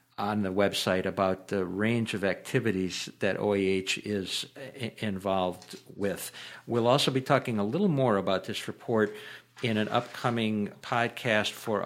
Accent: American